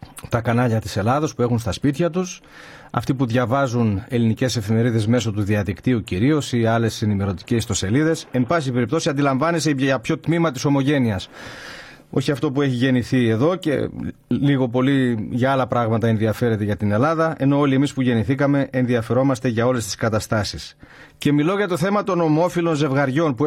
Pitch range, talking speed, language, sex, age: 120-160 Hz, 170 wpm, Greek, male, 40-59